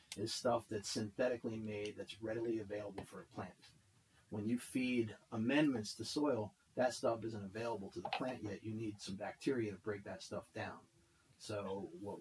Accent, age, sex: American, 40-59, male